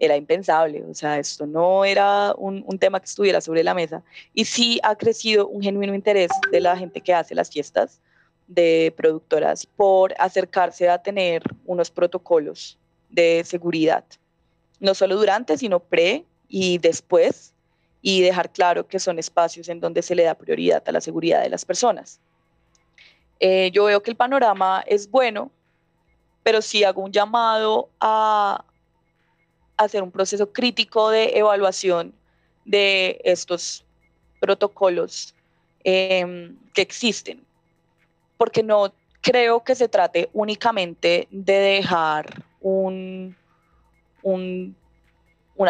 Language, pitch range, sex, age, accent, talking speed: Spanish, 175-210 Hz, female, 20-39, Colombian, 135 wpm